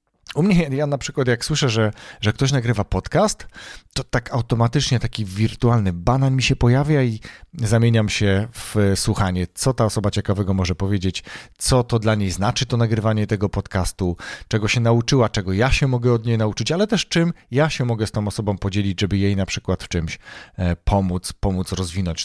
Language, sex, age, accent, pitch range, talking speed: Polish, male, 40-59, native, 100-130 Hz, 190 wpm